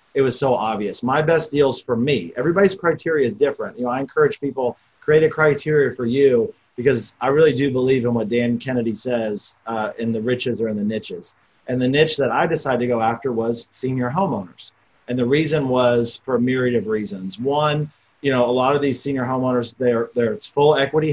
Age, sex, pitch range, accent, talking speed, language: 40-59, male, 115-140 Hz, American, 215 wpm, English